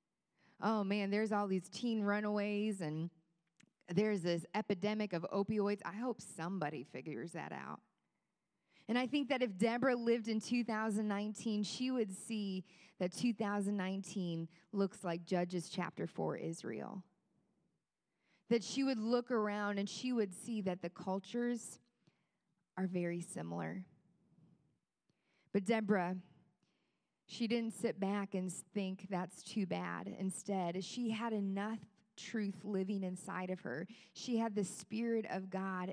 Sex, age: female, 20-39